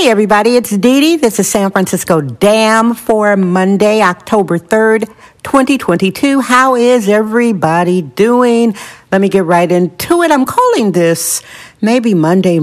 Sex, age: female, 60-79